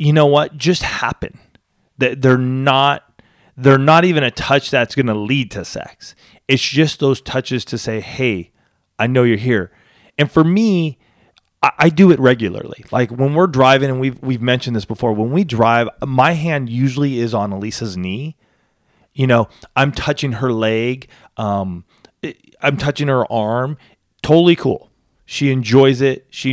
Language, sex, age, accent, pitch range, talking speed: English, male, 30-49, American, 115-155 Hz, 165 wpm